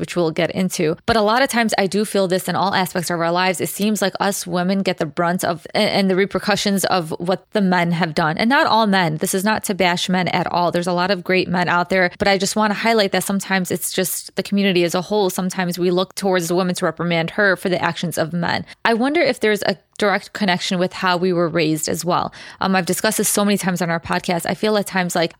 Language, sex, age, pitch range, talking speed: English, female, 20-39, 180-205 Hz, 270 wpm